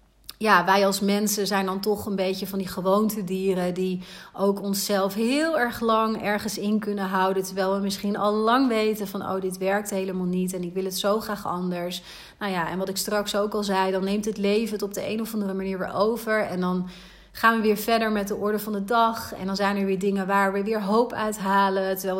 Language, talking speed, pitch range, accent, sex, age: Dutch, 240 wpm, 190-215 Hz, Dutch, female, 30-49